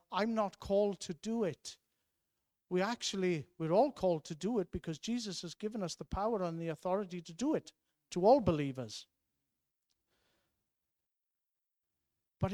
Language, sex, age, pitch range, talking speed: Danish, male, 50-69, 160-210 Hz, 150 wpm